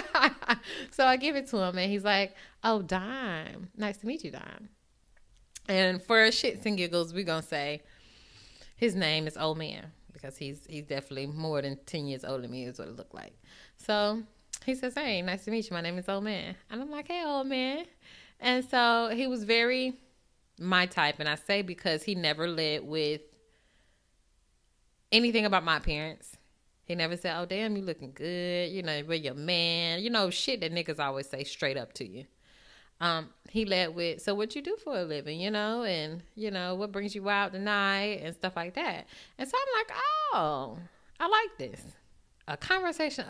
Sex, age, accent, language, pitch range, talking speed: female, 10-29, American, English, 155-220 Hz, 200 wpm